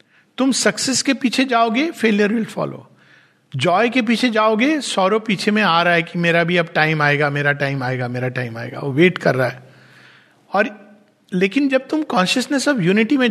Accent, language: native, Hindi